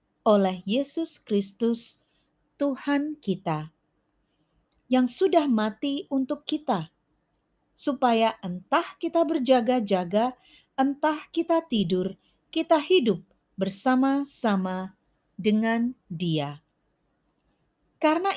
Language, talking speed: Indonesian, 75 wpm